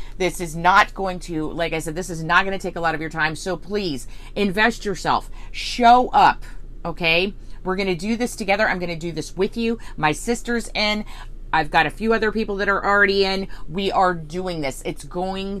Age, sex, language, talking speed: 30-49, female, English, 210 wpm